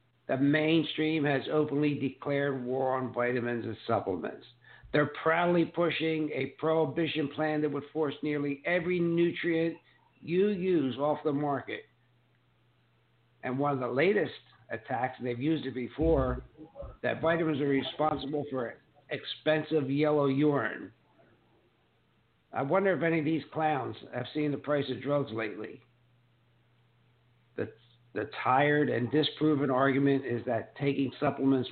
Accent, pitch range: American, 130-160 Hz